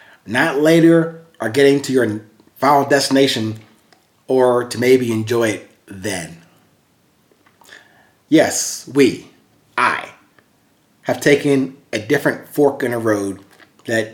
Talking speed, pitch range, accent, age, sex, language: 110 wpm, 110-145 Hz, American, 30-49, male, English